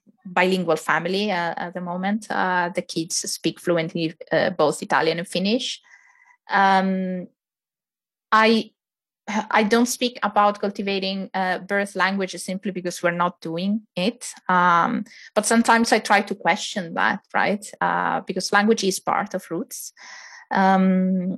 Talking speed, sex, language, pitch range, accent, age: 140 wpm, female, Finnish, 170-210 Hz, Italian, 20-39